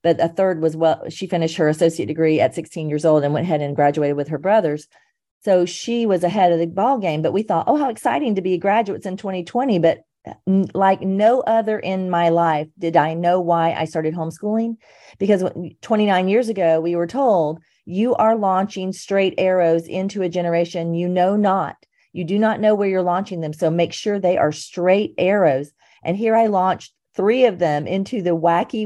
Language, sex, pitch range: English, female, 165-200 Hz